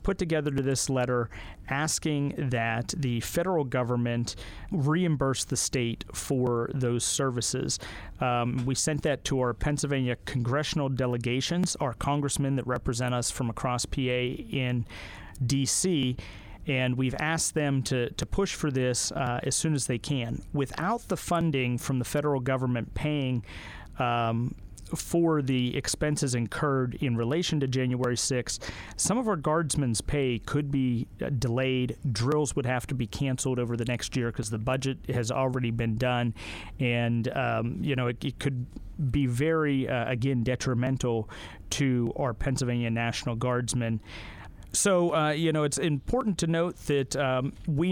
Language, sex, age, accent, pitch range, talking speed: English, male, 40-59, American, 120-145 Hz, 150 wpm